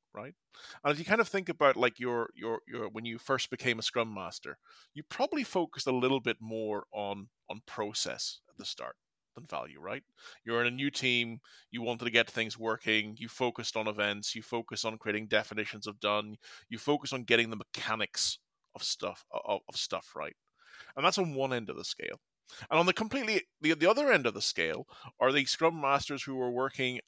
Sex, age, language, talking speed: male, 30-49, English, 210 wpm